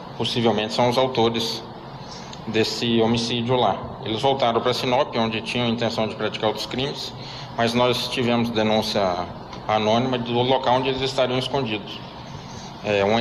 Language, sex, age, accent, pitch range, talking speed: Portuguese, male, 20-39, Brazilian, 105-120 Hz, 140 wpm